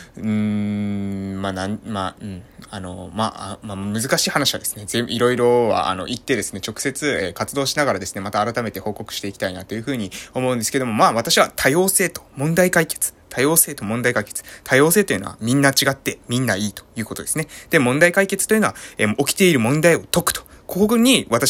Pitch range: 115-190 Hz